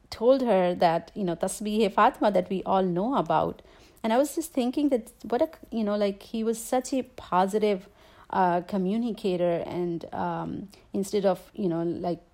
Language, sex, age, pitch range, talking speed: English, female, 40-59, 175-215 Hz, 185 wpm